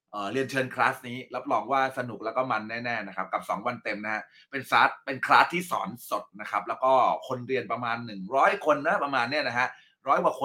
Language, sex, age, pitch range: Thai, male, 20-39, 120-170 Hz